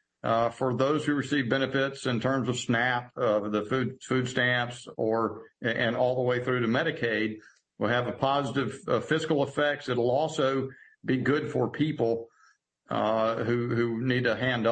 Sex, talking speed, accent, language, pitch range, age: male, 165 wpm, American, English, 125-150 Hz, 60-79